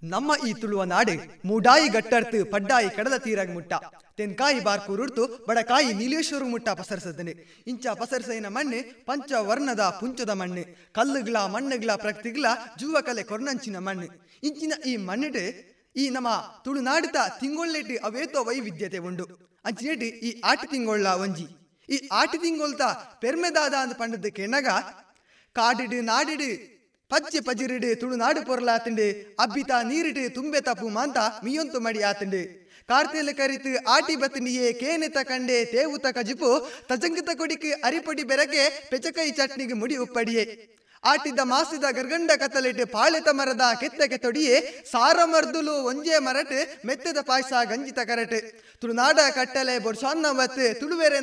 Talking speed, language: 95 wpm, Kannada